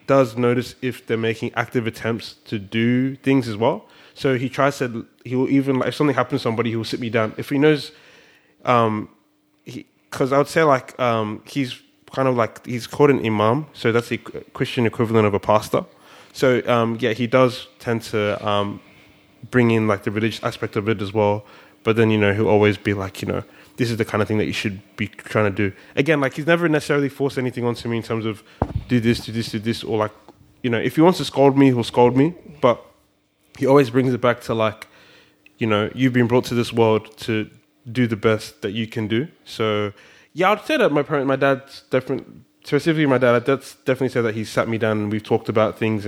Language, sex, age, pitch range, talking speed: English, male, 20-39, 110-135 Hz, 235 wpm